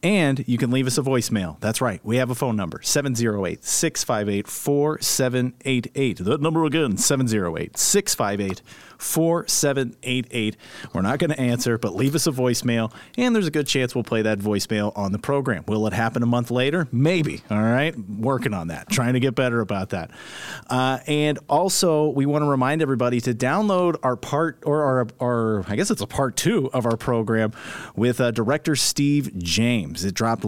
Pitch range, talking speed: 110-135 Hz, 175 wpm